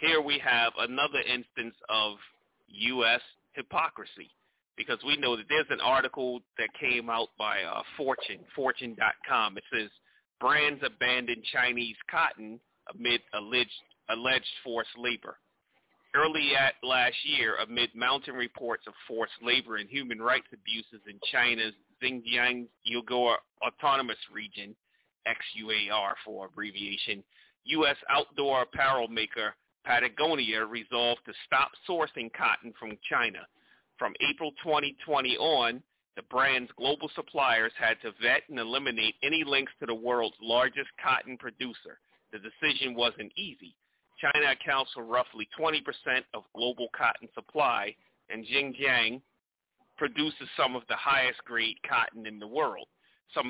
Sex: male